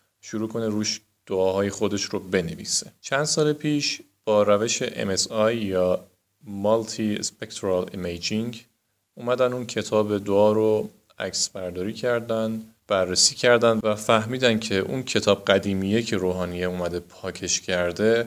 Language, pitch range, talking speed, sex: Persian, 95-115 Hz, 125 wpm, male